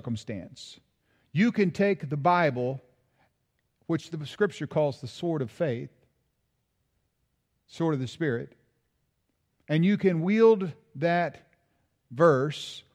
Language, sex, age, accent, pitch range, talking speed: English, male, 50-69, American, 135-195 Hz, 110 wpm